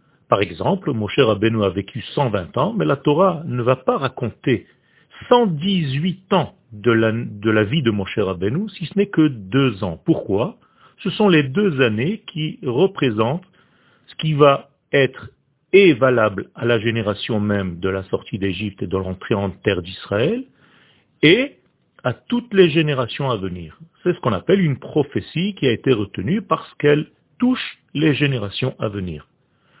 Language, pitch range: French, 110-155 Hz